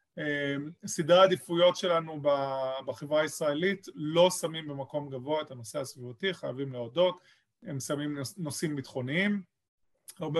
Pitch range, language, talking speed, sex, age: 140-170 Hz, Hebrew, 110 wpm, male, 30-49